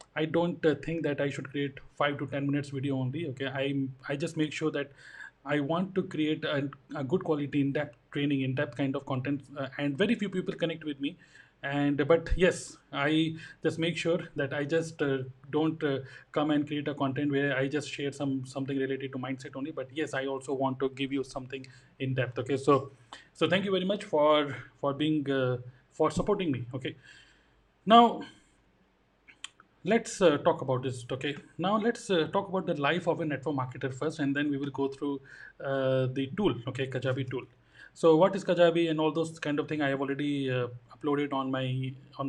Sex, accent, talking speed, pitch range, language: male, native, 210 wpm, 135-160 Hz, Hindi